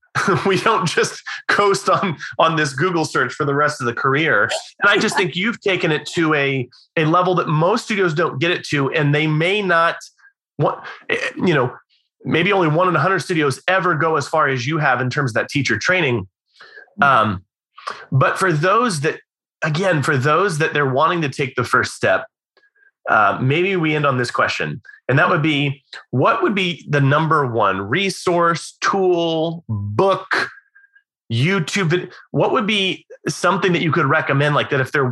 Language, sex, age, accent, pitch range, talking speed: English, male, 30-49, American, 140-180 Hz, 185 wpm